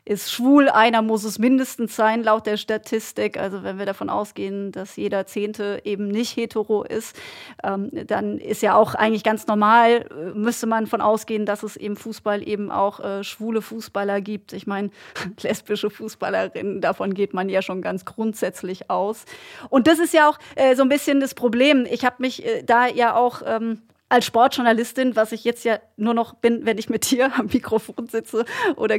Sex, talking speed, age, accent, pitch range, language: female, 195 wpm, 30-49, German, 215-240 Hz, German